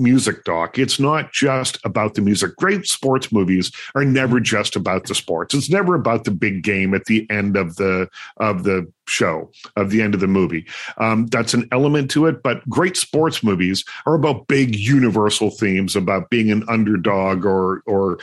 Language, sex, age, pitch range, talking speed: English, male, 50-69, 100-125 Hz, 190 wpm